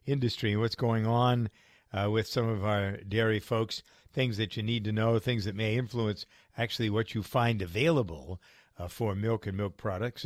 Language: English